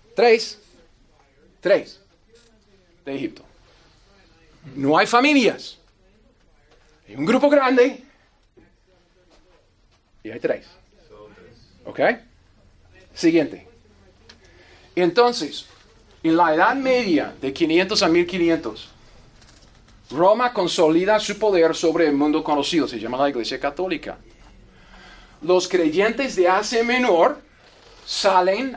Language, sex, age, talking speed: Spanish, male, 40-59, 90 wpm